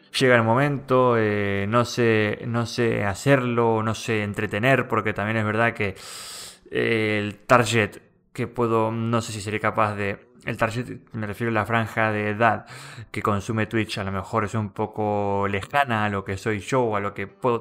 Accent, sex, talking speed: Argentinian, male, 190 wpm